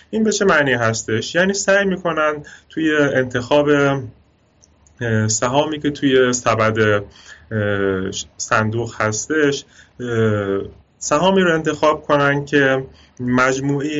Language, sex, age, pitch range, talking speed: Persian, male, 30-49, 110-140 Hz, 90 wpm